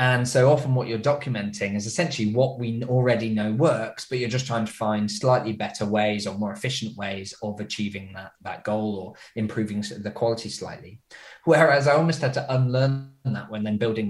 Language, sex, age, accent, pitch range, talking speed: English, male, 20-39, British, 105-130 Hz, 195 wpm